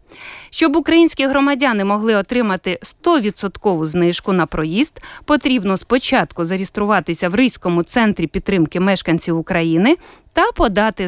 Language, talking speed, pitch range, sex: Ukrainian, 110 wpm, 185-270 Hz, female